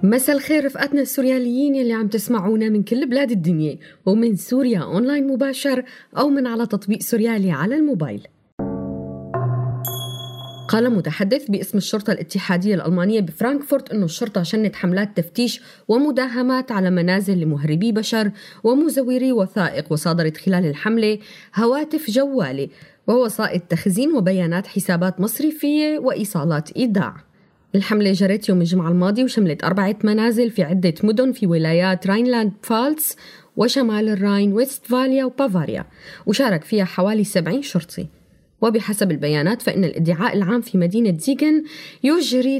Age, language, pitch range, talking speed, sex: 20-39, Arabic, 180-245 Hz, 120 wpm, female